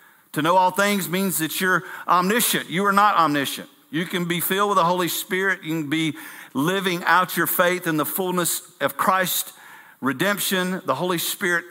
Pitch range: 170-210 Hz